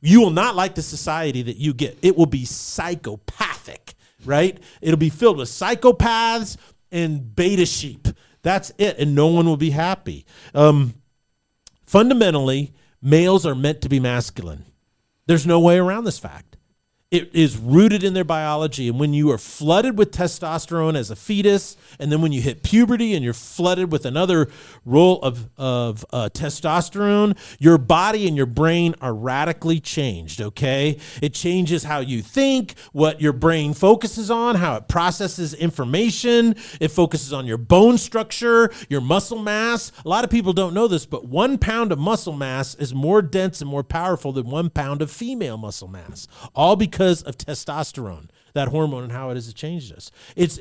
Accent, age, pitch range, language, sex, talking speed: American, 40-59, 135-190 Hz, English, male, 175 wpm